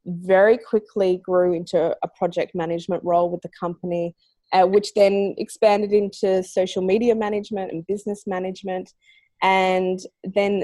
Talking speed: 135 wpm